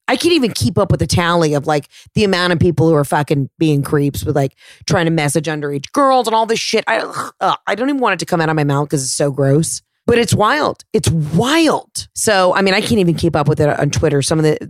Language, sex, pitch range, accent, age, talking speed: English, female, 150-195 Hz, American, 30-49, 275 wpm